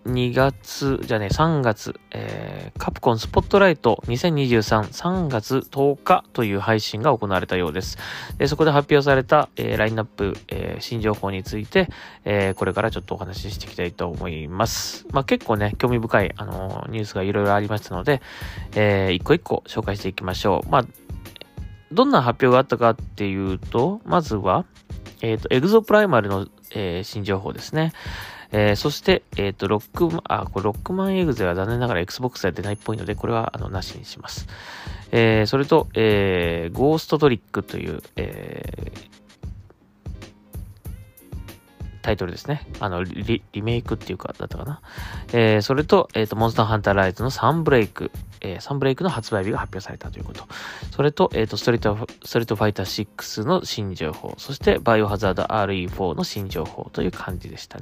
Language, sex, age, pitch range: Japanese, male, 20-39, 95-125 Hz